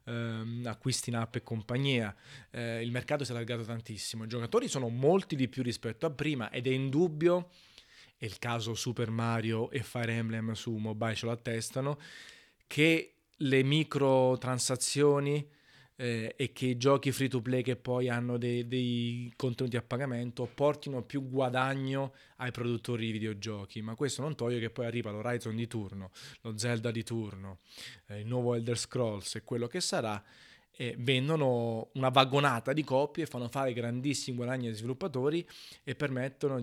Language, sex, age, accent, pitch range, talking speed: Italian, male, 20-39, native, 115-135 Hz, 165 wpm